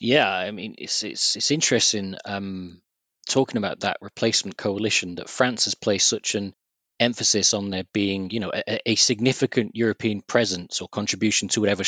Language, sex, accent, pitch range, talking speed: English, male, British, 100-110 Hz, 170 wpm